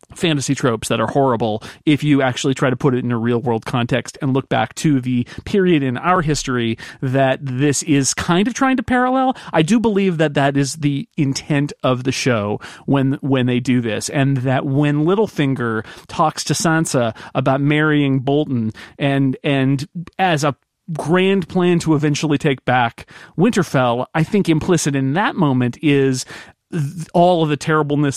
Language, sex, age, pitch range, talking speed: English, male, 40-59, 130-175 Hz, 175 wpm